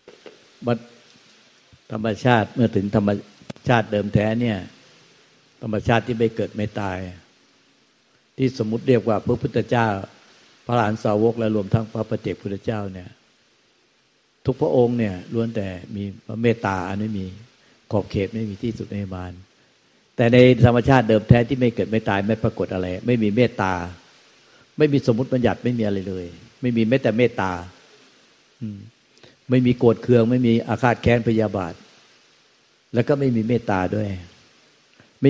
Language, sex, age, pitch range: Thai, male, 60-79, 100-120 Hz